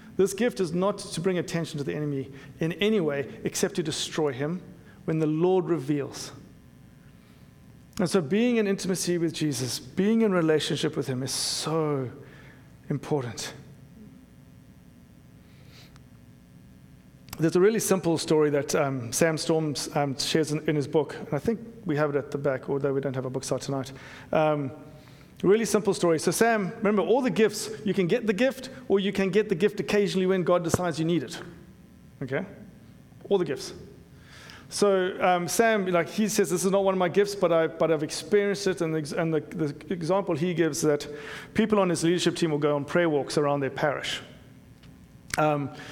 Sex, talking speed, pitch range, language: male, 185 wpm, 145-190 Hz, English